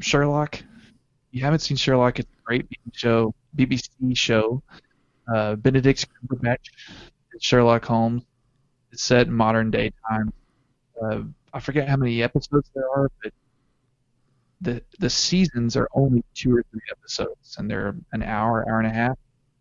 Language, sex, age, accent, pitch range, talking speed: English, male, 20-39, American, 115-135 Hz, 150 wpm